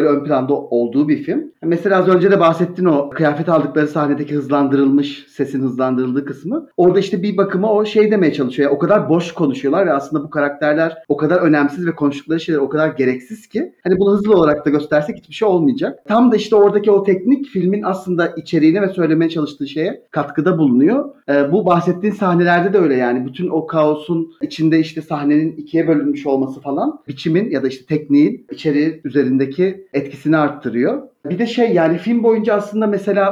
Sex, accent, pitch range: male, native, 145-195 Hz